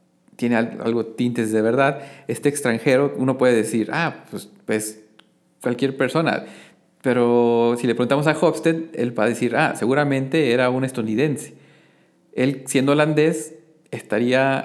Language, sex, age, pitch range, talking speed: Spanish, male, 40-59, 120-150 Hz, 140 wpm